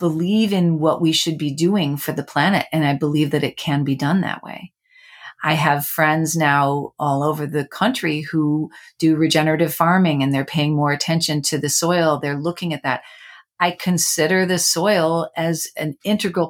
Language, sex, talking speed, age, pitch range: English, female, 185 wpm, 40-59, 155-195 Hz